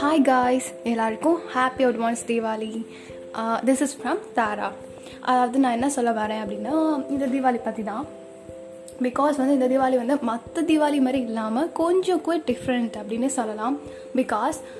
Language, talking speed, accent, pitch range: Tamil, 145 wpm, native, 235-280 Hz